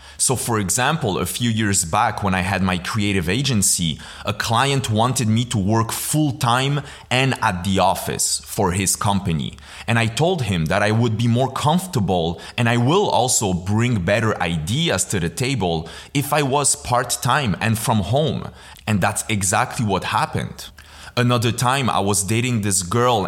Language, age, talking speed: English, 30-49, 170 wpm